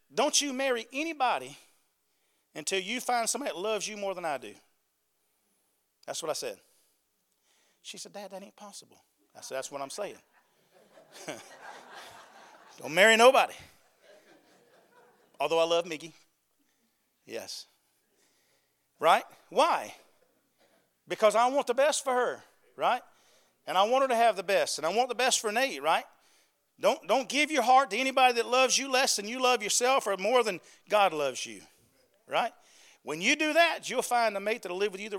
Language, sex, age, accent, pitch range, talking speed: English, male, 40-59, American, 190-255 Hz, 170 wpm